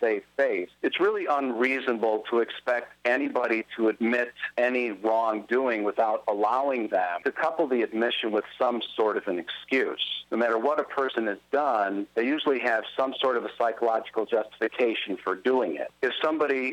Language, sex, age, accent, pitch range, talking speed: English, male, 50-69, American, 115-135 Hz, 165 wpm